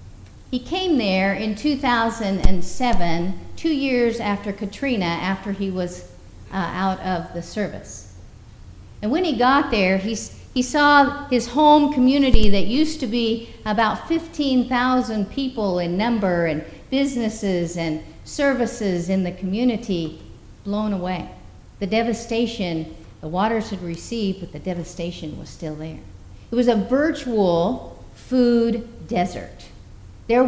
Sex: female